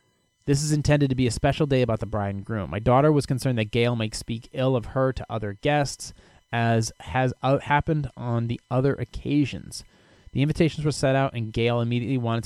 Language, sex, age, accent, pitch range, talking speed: English, male, 30-49, American, 110-140 Hz, 205 wpm